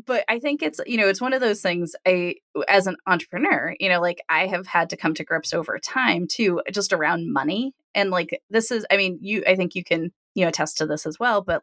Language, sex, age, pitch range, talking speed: English, female, 20-39, 170-220 Hz, 260 wpm